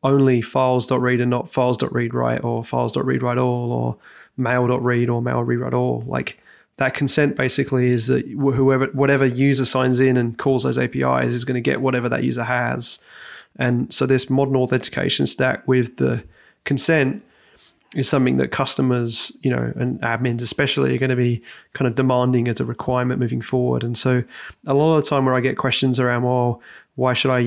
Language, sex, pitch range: English, male, 120-135 Hz